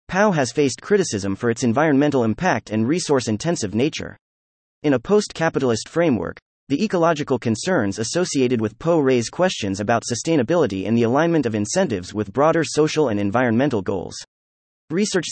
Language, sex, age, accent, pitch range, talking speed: English, male, 30-49, American, 105-160 Hz, 145 wpm